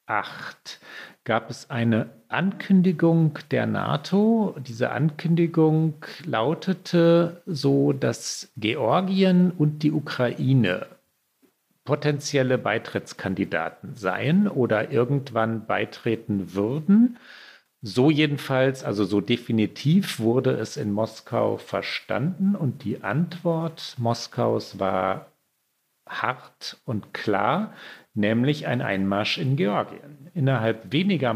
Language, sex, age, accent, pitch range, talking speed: German, male, 50-69, German, 105-155 Hz, 90 wpm